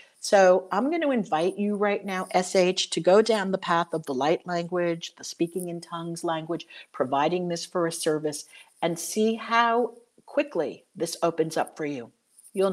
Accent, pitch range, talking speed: American, 175-235 Hz, 175 wpm